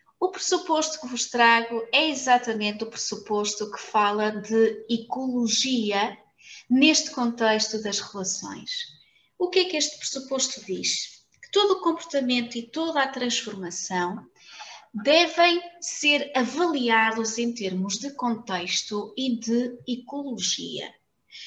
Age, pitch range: 20-39, 210-265 Hz